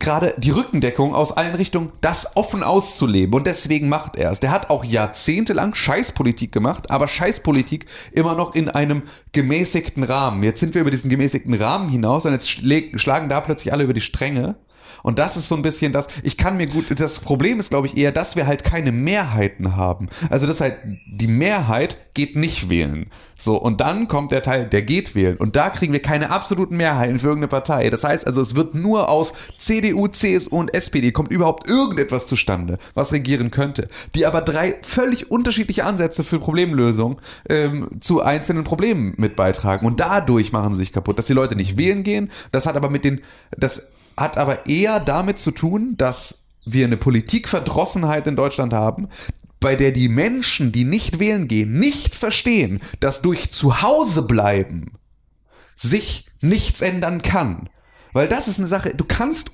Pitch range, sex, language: 120-175 Hz, male, German